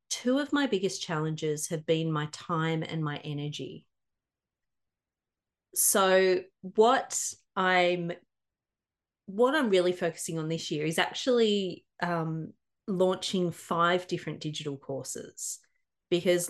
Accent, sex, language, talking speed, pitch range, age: Australian, female, English, 115 wpm, 160-200 Hz, 30-49